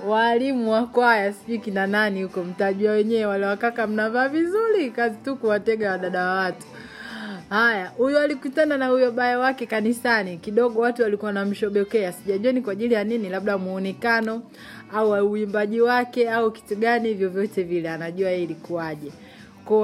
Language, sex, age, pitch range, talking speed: Swahili, female, 30-49, 185-235 Hz, 155 wpm